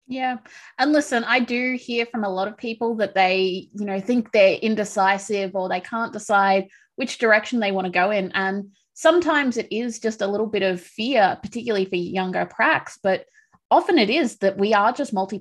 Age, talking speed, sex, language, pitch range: 20-39, 205 wpm, female, English, 195-235 Hz